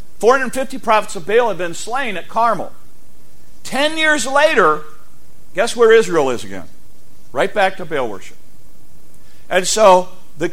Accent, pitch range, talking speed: American, 155-215 Hz, 140 wpm